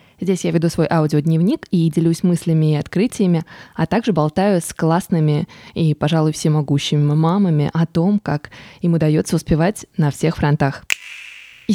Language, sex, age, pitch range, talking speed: Russian, female, 20-39, 160-200 Hz, 150 wpm